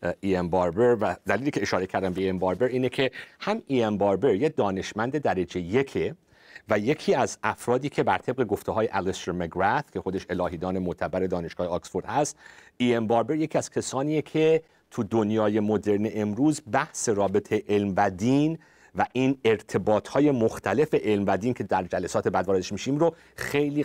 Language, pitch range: Persian, 100-140 Hz